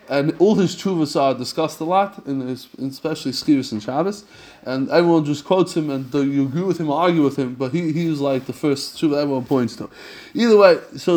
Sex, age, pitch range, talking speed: male, 20-39, 160-205 Hz, 220 wpm